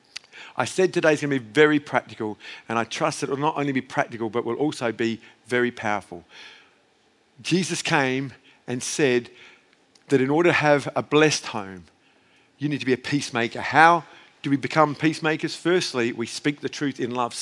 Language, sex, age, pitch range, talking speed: English, male, 50-69, 135-185 Hz, 185 wpm